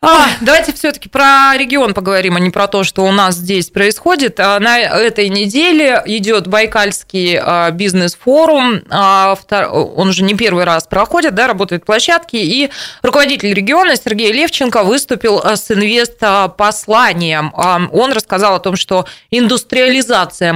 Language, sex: Russian, female